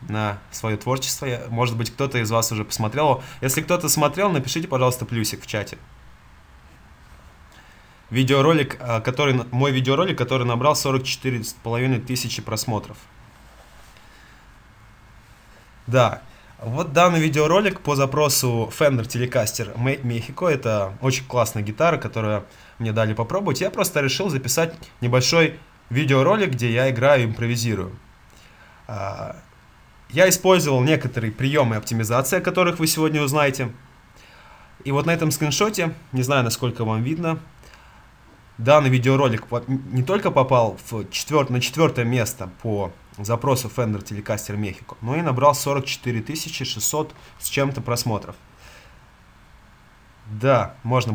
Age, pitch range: 20-39, 110-145 Hz